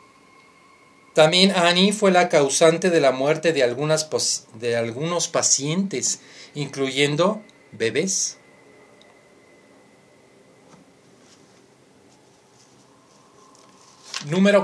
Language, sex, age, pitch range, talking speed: Spanish, male, 40-59, 130-185 Hz, 70 wpm